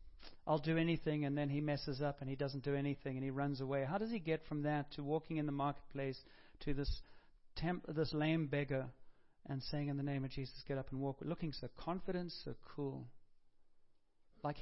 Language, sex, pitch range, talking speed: English, male, 135-155 Hz, 205 wpm